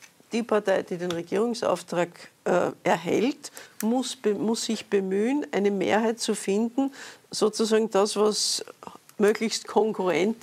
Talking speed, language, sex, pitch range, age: 120 wpm, German, female, 190-225 Hz, 50-69